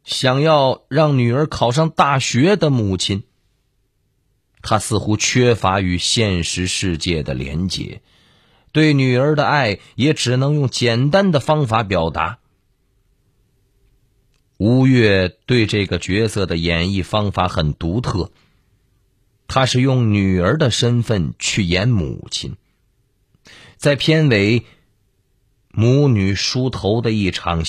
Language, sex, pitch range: Chinese, male, 95-135 Hz